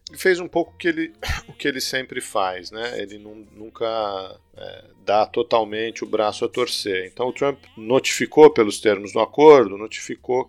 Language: Portuguese